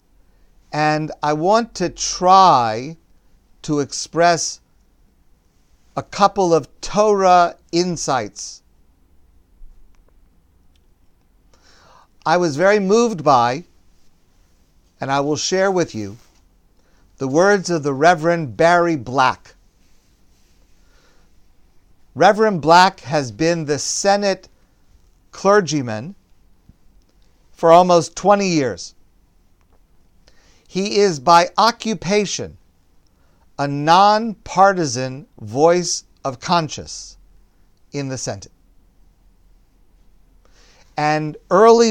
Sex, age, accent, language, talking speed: male, 50-69, American, English, 80 wpm